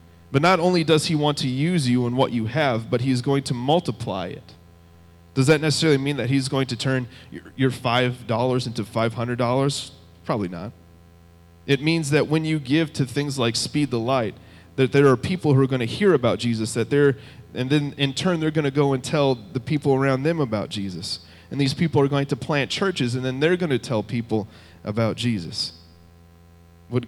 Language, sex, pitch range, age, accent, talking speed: English, male, 85-140 Hz, 30-49, American, 205 wpm